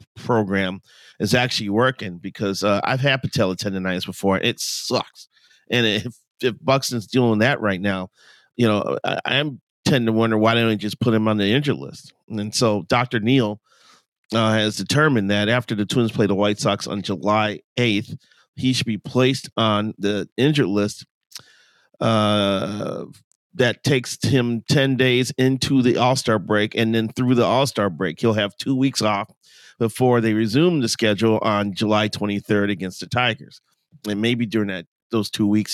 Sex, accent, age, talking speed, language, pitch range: male, American, 40-59, 180 wpm, English, 100-125 Hz